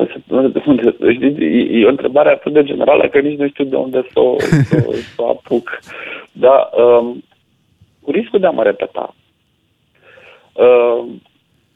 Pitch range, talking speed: 110-145 Hz, 140 wpm